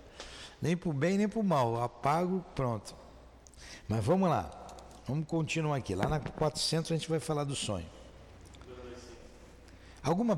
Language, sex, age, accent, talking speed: Portuguese, male, 60-79, Brazilian, 150 wpm